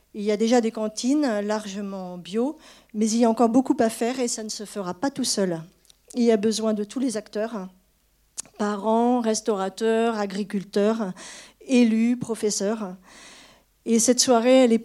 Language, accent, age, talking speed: French, French, 50-69, 170 wpm